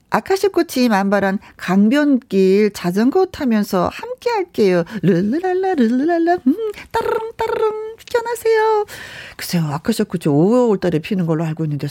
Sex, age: female, 40-59